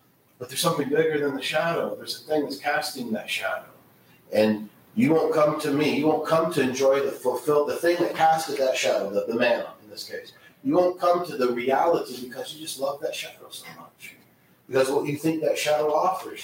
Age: 40-59